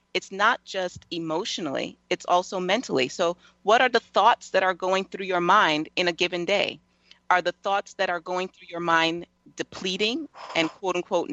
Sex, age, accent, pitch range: female, 40-59, American, 155-185 Hz